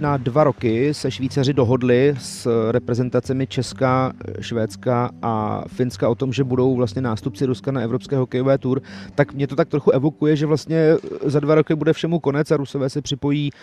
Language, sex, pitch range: Czech, male, 125-145 Hz